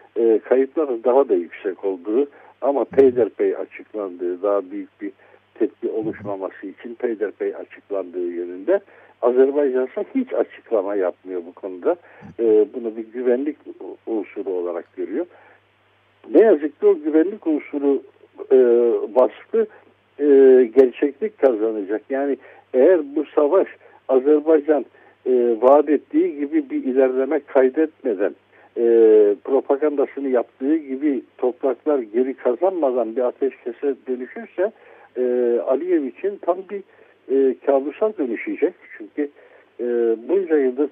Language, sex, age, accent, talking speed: Turkish, male, 60-79, native, 110 wpm